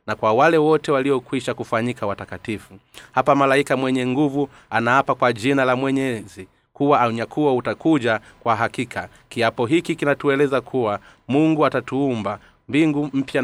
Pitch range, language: 115-145 Hz, Swahili